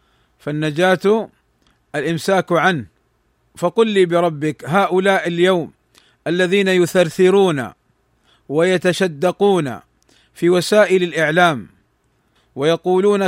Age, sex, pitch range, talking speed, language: 40-59, male, 165-190 Hz, 70 wpm, Arabic